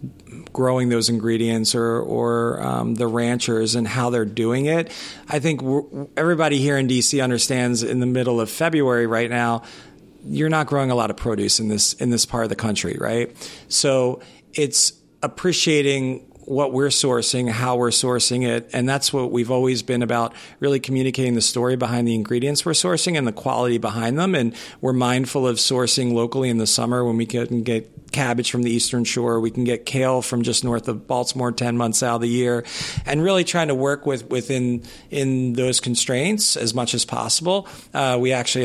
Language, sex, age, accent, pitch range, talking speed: English, male, 40-59, American, 115-135 Hz, 190 wpm